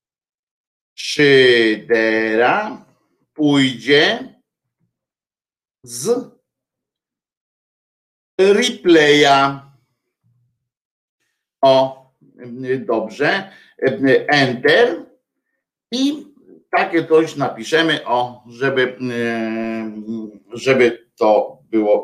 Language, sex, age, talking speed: Polish, male, 50-69, 45 wpm